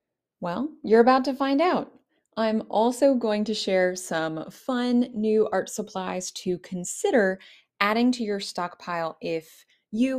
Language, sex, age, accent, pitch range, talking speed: English, female, 30-49, American, 185-245 Hz, 140 wpm